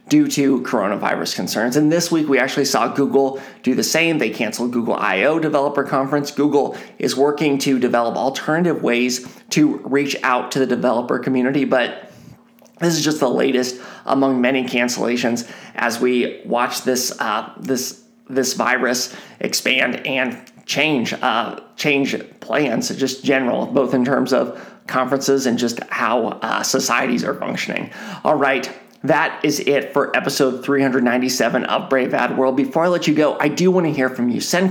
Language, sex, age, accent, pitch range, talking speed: English, male, 30-49, American, 130-160 Hz, 165 wpm